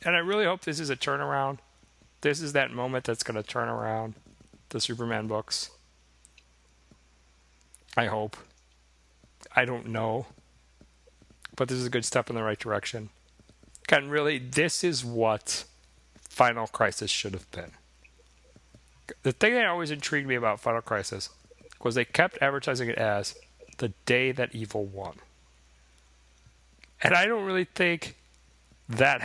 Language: English